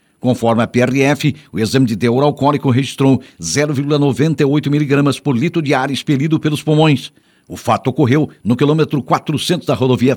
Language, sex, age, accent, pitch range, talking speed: Portuguese, male, 50-69, Brazilian, 130-150 Hz, 155 wpm